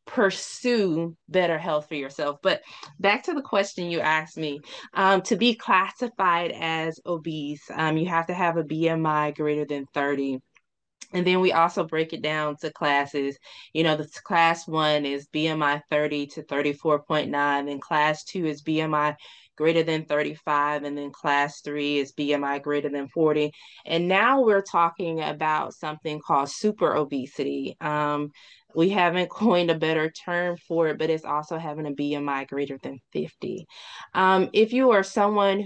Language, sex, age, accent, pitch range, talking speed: English, female, 20-39, American, 150-185 Hz, 160 wpm